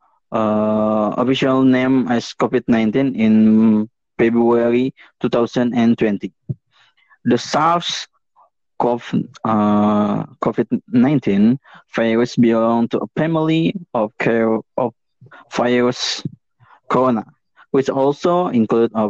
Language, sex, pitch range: English, male, 115-130 Hz